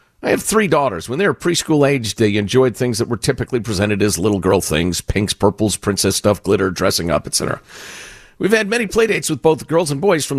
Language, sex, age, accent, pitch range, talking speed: English, male, 50-69, American, 100-160 Hz, 220 wpm